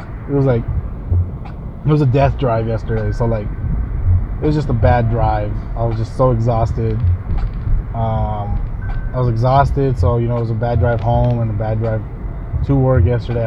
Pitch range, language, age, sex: 110-130 Hz, English, 20-39, male